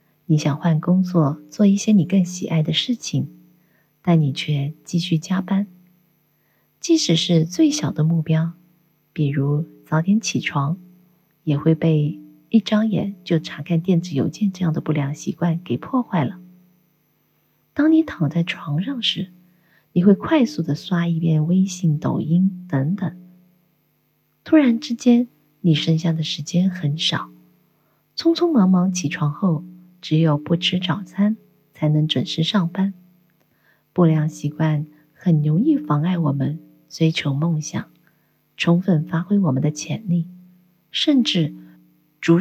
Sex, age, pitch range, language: female, 30-49, 155-180 Hz, Chinese